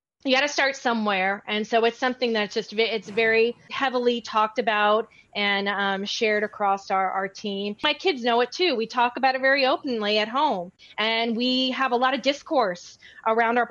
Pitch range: 220-260 Hz